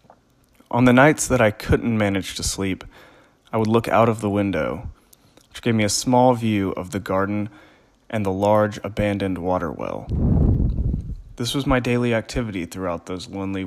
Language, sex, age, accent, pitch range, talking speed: English, male, 30-49, American, 95-115 Hz, 170 wpm